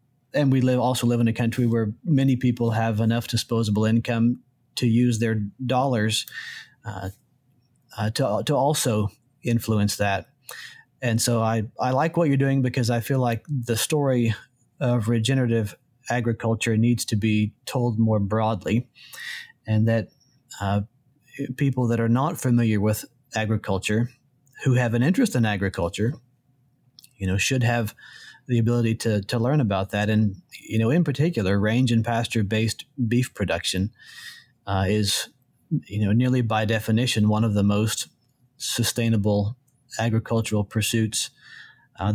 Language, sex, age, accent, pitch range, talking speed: English, male, 40-59, American, 110-125 Hz, 145 wpm